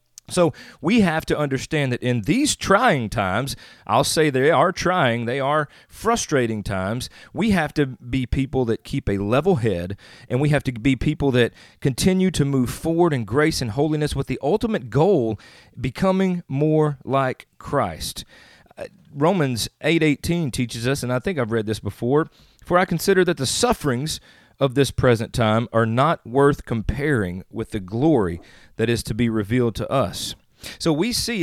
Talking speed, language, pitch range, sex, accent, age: 170 wpm, English, 120-160 Hz, male, American, 40-59